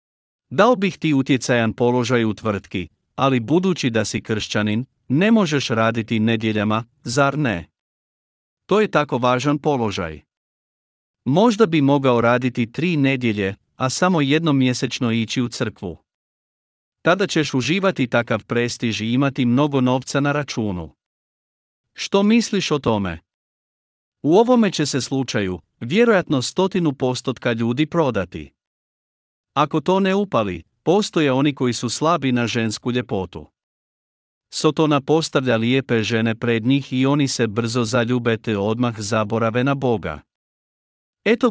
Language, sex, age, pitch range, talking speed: Croatian, male, 50-69, 115-150 Hz, 125 wpm